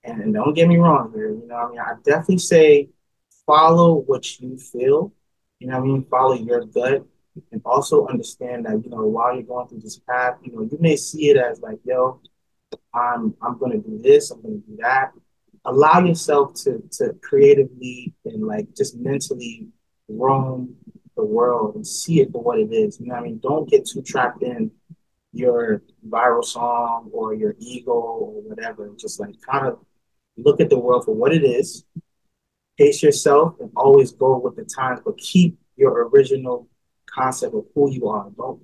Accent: American